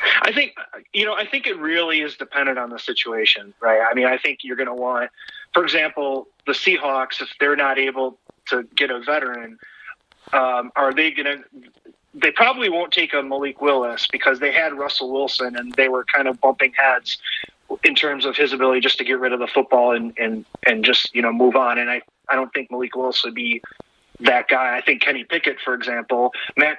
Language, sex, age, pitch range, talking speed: English, male, 30-49, 120-145 Hz, 220 wpm